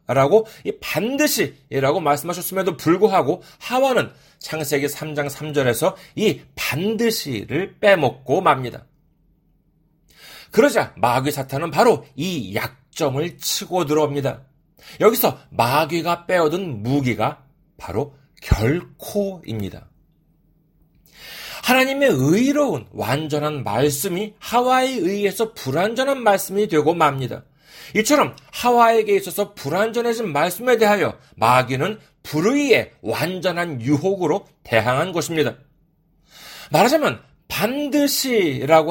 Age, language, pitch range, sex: 40-59, Korean, 145-220 Hz, male